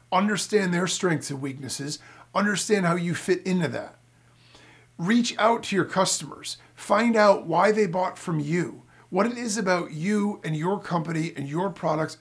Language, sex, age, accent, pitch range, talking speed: English, male, 40-59, American, 155-195 Hz, 165 wpm